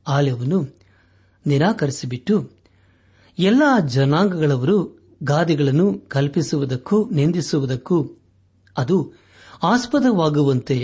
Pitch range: 100-155 Hz